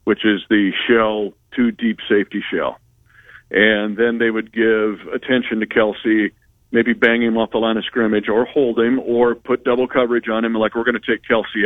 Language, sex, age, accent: English, male, 50-69, American